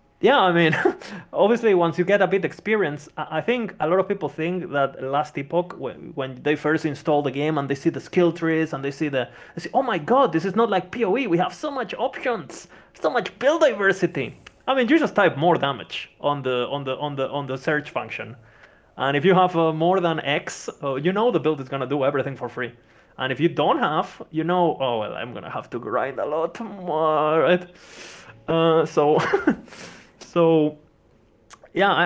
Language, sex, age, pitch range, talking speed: English, male, 20-39, 140-180 Hz, 215 wpm